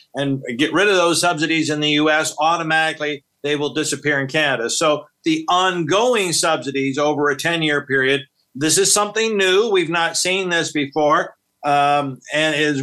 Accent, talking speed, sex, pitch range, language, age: American, 170 wpm, male, 150-195 Hz, English, 50-69